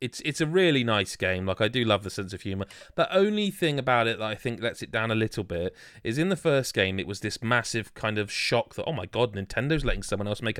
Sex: male